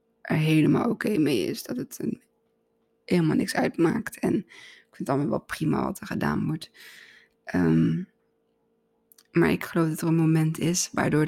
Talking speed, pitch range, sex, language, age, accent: 175 wpm, 155-200 Hz, female, Dutch, 20-39, Dutch